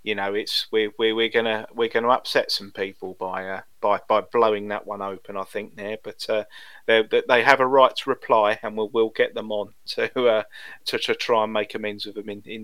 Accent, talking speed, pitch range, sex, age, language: British, 240 wpm, 105-145 Hz, male, 30-49, English